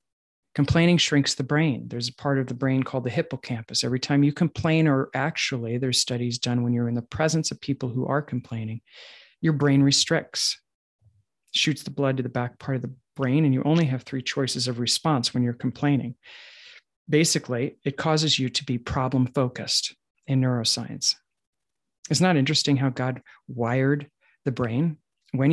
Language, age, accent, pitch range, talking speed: English, 40-59, American, 125-145 Hz, 175 wpm